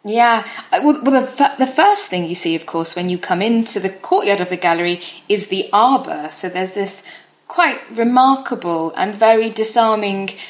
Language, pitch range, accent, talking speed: English, 180-240 Hz, British, 170 wpm